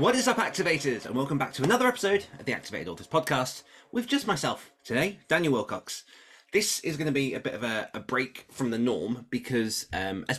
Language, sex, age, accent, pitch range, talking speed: English, male, 20-39, British, 110-140 Hz, 220 wpm